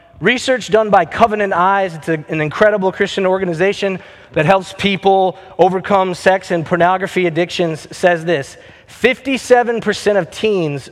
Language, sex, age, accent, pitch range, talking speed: English, male, 20-39, American, 150-200 Hz, 130 wpm